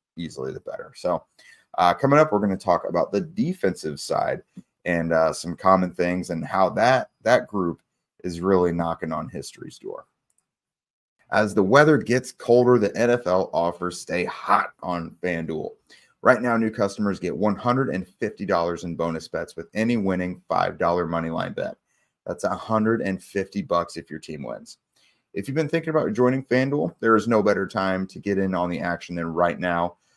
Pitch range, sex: 85-105 Hz, male